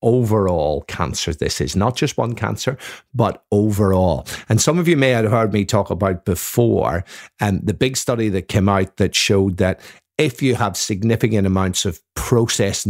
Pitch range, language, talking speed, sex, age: 95-120 Hz, English, 180 wpm, male, 50-69